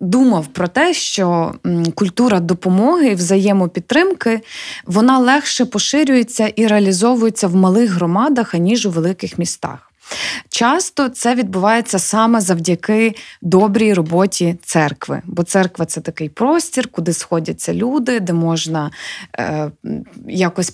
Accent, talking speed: native, 115 wpm